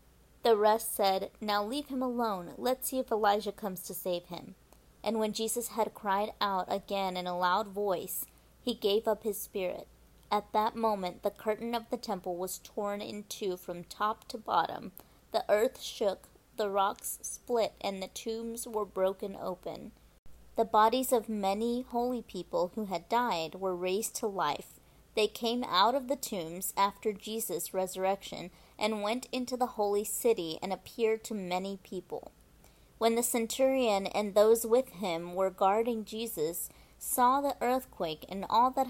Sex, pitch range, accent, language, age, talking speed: female, 190-230 Hz, American, English, 30-49, 165 wpm